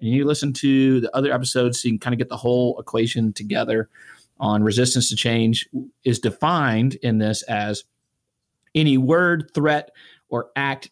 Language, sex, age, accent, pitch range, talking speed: English, male, 40-59, American, 105-130 Hz, 170 wpm